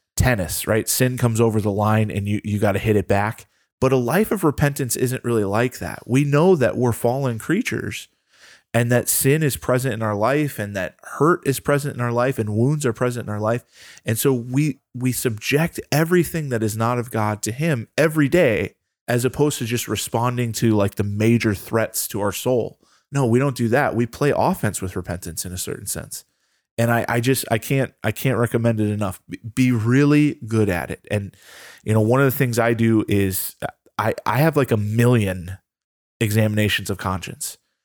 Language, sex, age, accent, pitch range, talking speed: English, male, 20-39, American, 105-135 Hz, 205 wpm